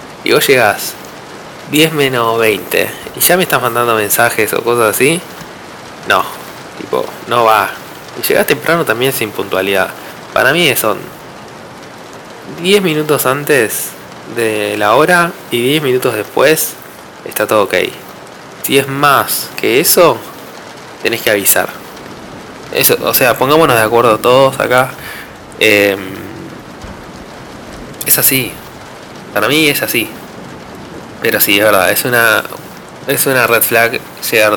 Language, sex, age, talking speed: Spanish, male, 20-39, 130 wpm